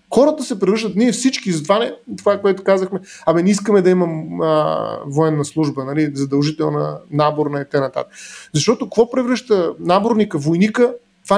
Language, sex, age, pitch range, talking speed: Bulgarian, male, 30-49, 170-230 Hz, 160 wpm